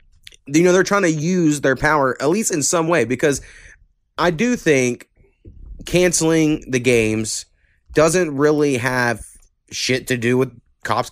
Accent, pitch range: American, 115-145 Hz